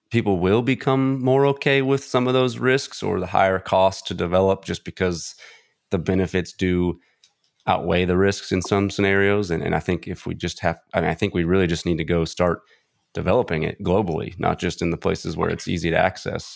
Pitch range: 85-100 Hz